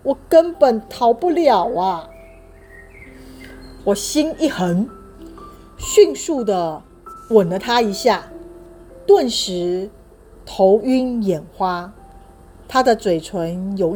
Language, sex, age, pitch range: Chinese, female, 40-59, 180-280 Hz